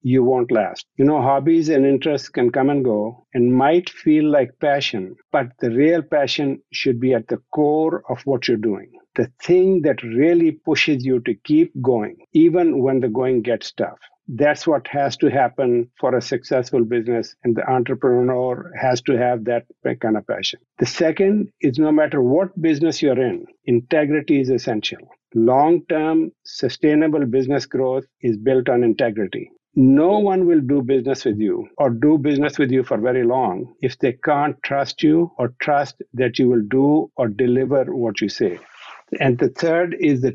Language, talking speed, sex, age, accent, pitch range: English, 180 wpm, male, 50-69, Indian, 125-155 Hz